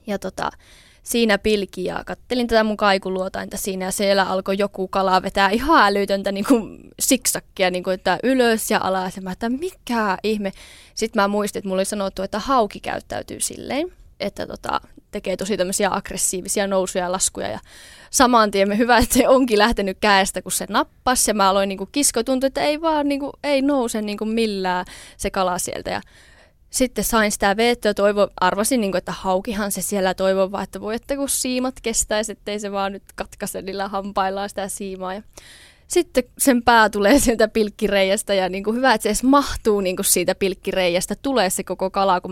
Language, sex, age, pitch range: Finnish, female, 20-39, 190-235 Hz